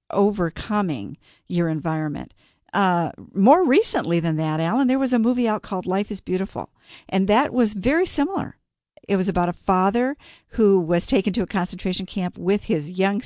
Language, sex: English, female